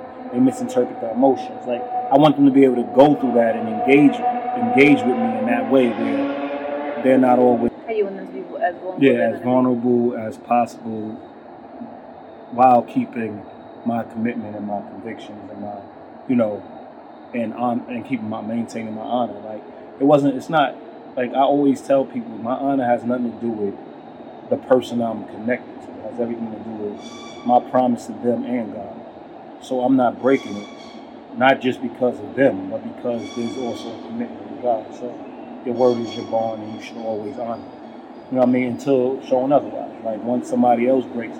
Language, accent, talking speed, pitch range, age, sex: English, American, 190 wpm, 120-145 Hz, 20-39, male